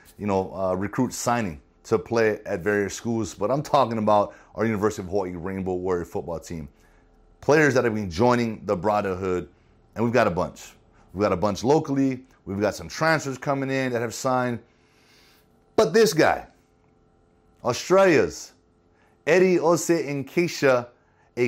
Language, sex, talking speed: English, male, 155 wpm